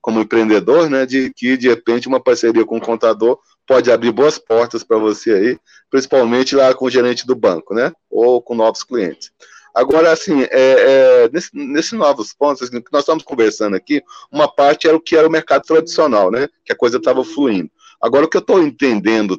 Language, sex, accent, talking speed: Portuguese, male, Brazilian, 205 wpm